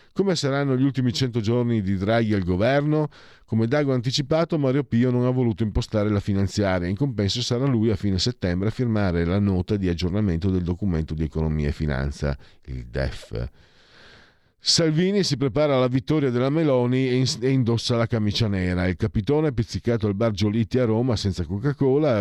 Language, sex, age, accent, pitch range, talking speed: Italian, male, 50-69, native, 85-120 Hz, 175 wpm